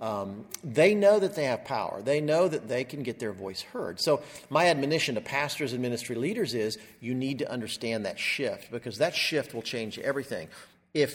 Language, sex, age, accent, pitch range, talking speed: English, male, 50-69, American, 115-145 Hz, 205 wpm